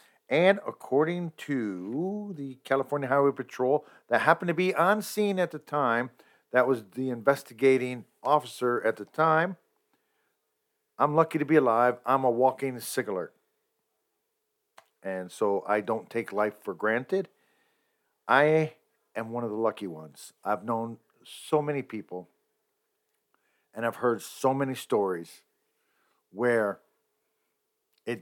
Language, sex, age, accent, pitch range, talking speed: English, male, 50-69, American, 105-165 Hz, 130 wpm